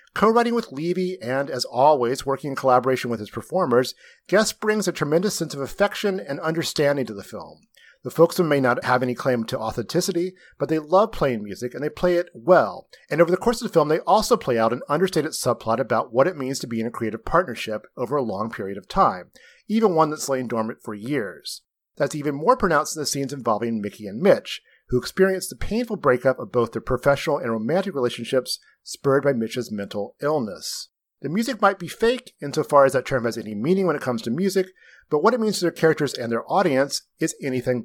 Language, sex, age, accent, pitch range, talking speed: English, male, 40-59, American, 125-190 Hz, 215 wpm